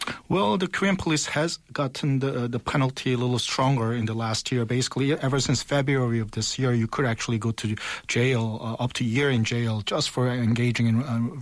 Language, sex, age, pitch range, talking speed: English, male, 40-59, 115-140 Hz, 220 wpm